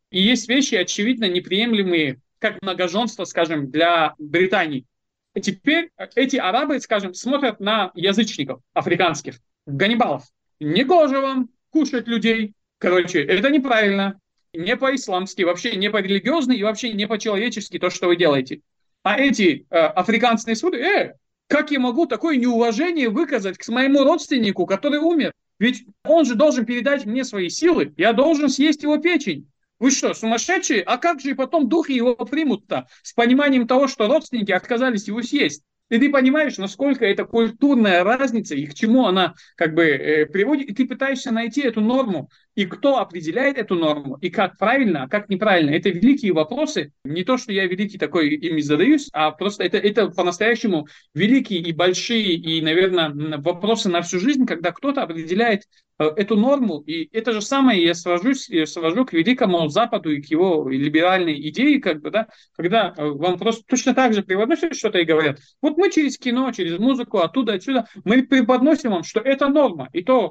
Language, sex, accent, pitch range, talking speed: Russian, male, native, 180-265 Hz, 160 wpm